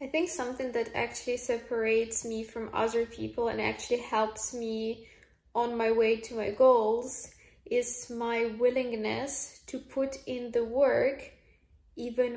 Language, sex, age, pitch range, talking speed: English, female, 10-29, 225-245 Hz, 140 wpm